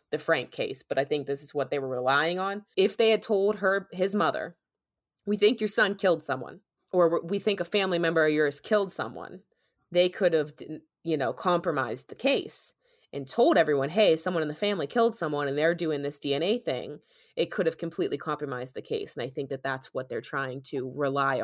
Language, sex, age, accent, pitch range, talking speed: English, female, 20-39, American, 145-190 Hz, 215 wpm